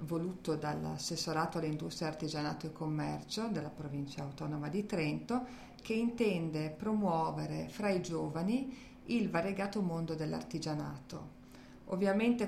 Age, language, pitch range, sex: 40-59, Italian, 165-200 Hz, female